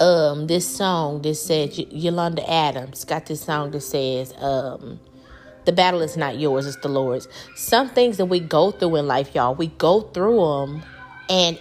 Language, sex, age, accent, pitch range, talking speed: English, female, 30-49, American, 150-205 Hz, 180 wpm